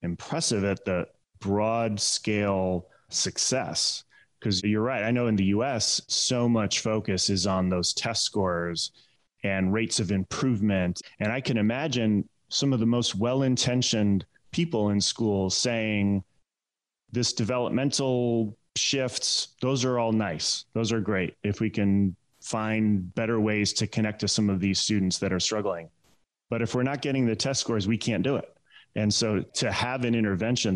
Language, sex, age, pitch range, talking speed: English, male, 30-49, 100-120 Hz, 160 wpm